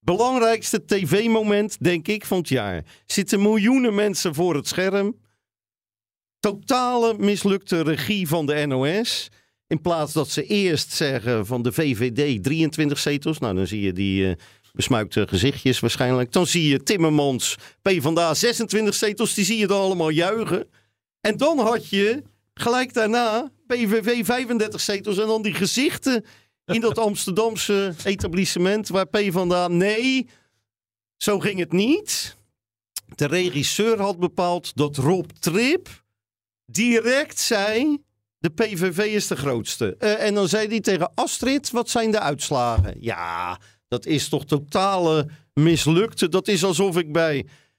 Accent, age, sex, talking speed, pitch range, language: Dutch, 40-59, male, 140 wpm, 140-210 Hz, Dutch